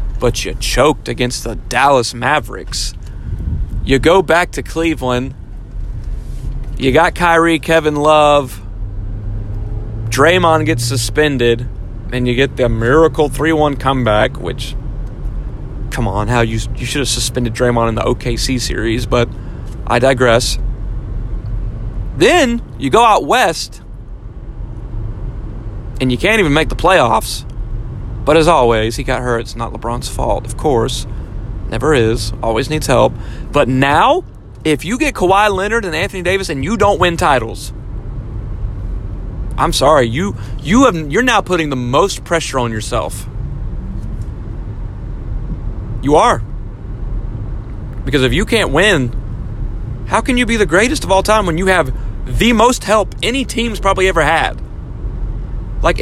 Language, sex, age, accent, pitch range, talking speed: English, male, 30-49, American, 110-155 Hz, 140 wpm